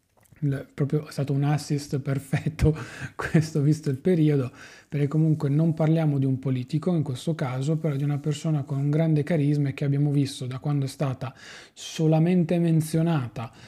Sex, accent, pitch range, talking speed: male, native, 135-155 Hz, 165 wpm